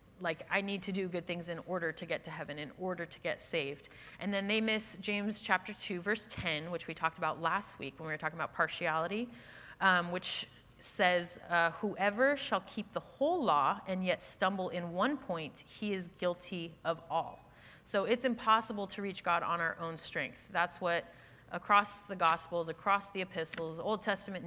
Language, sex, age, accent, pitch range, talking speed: English, female, 20-39, American, 165-205 Hz, 195 wpm